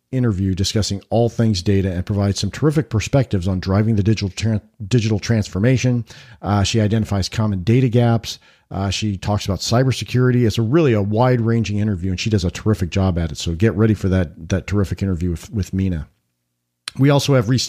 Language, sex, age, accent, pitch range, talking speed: English, male, 50-69, American, 95-120 Hz, 195 wpm